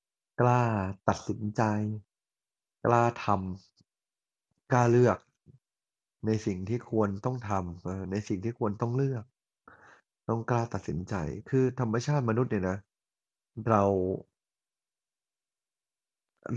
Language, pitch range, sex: Thai, 95-120 Hz, male